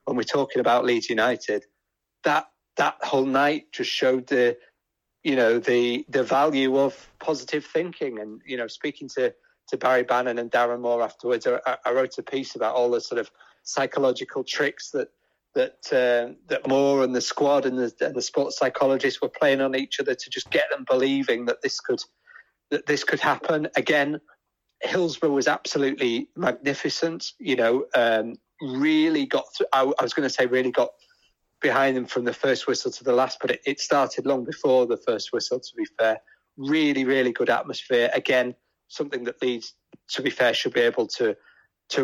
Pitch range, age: 125-180 Hz, 30-49